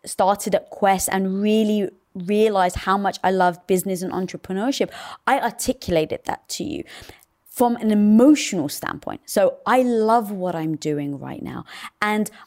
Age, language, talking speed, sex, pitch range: 20-39, English, 150 wpm, female, 190-250 Hz